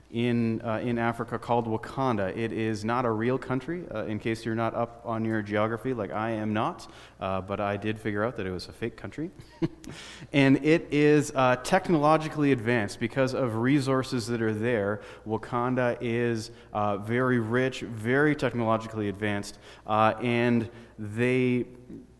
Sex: male